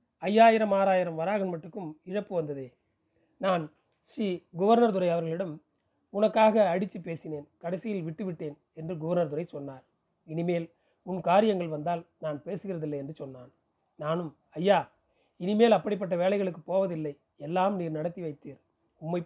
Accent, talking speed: native, 120 wpm